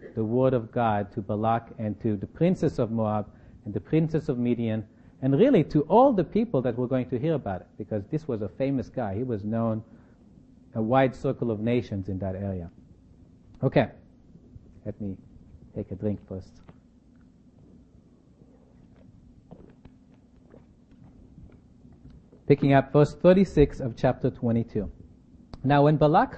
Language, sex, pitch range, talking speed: English, male, 110-150 Hz, 145 wpm